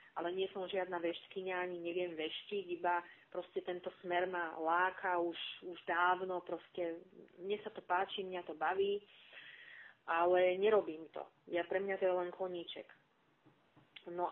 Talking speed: 145 wpm